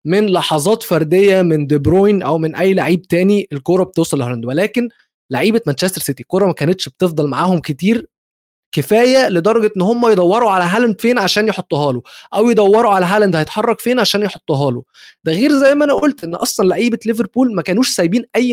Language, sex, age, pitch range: Arabic, male, 20-39, 150-210 Hz